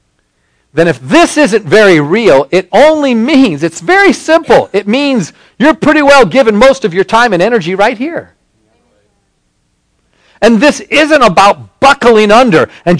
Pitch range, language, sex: 205-300 Hz, English, male